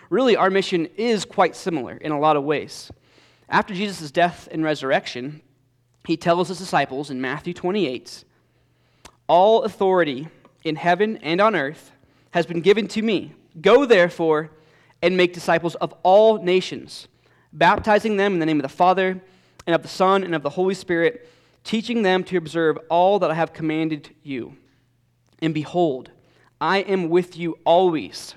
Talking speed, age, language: 165 wpm, 20-39, English